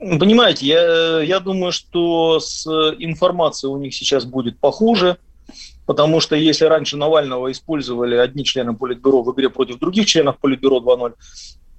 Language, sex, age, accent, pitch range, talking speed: Russian, male, 30-49, native, 125-155 Hz, 145 wpm